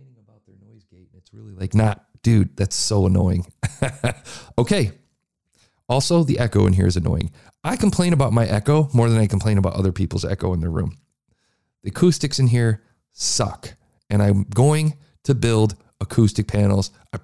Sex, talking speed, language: male, 155 wpm, English